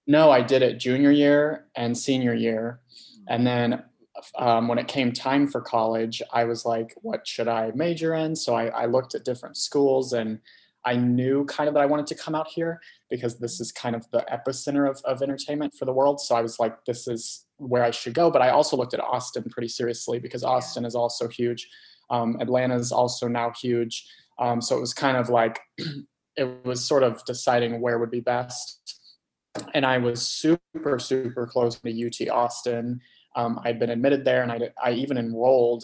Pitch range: 115-130 Hz